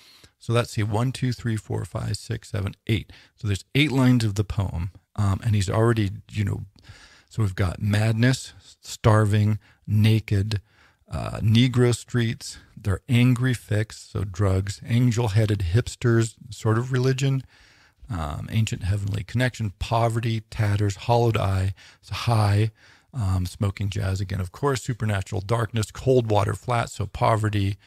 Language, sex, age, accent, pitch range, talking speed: English, male, 40-59, American, 100-115 Hz, 145 wpm